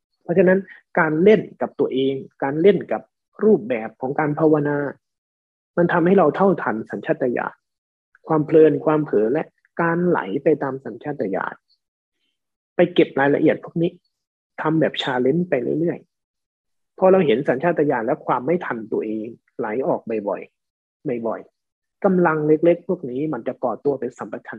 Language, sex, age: Thai, male, 20-39